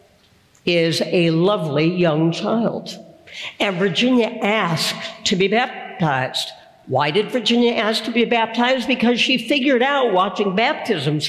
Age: 60-79